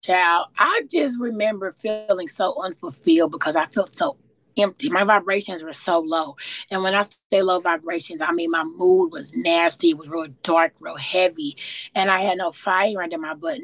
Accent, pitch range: American, 170-220 Hz